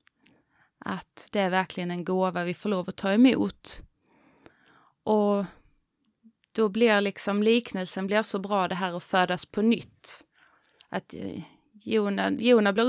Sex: female